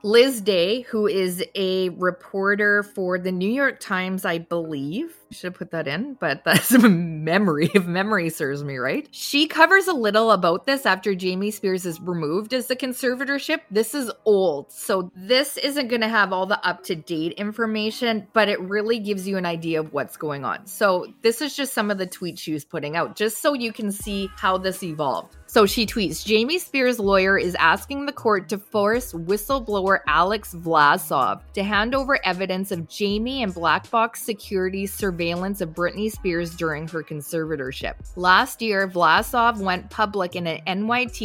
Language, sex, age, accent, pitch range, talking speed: English, female, 20-39, American, 170-220 Hz, 180 wpm